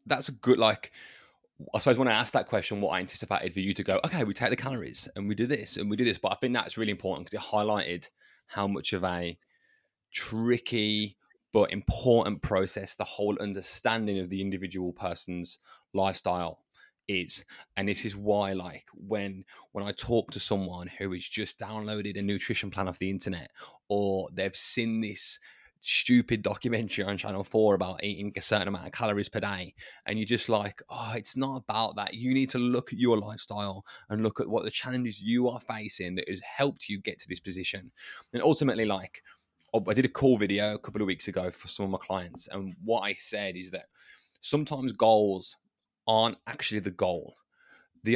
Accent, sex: British, male